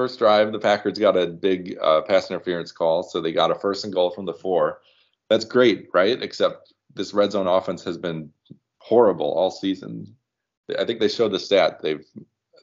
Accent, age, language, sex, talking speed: American, 30-49, English, male, 195 wpm